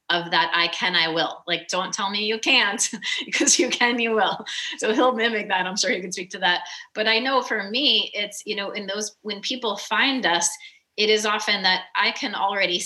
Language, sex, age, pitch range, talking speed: English, female, 30-49, 175-215 Hz, 230 wpm